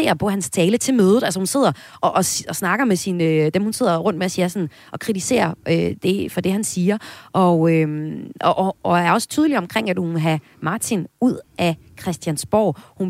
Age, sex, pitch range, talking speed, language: 30-49, female, 160-225 Hz, 220 wpm, Danish